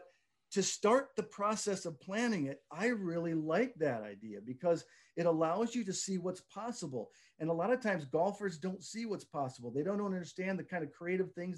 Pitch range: 150-195 Hz